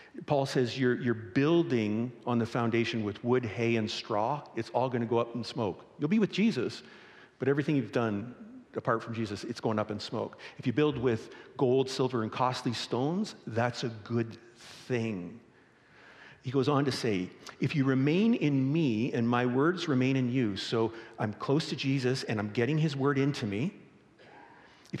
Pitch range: 115-145 Hz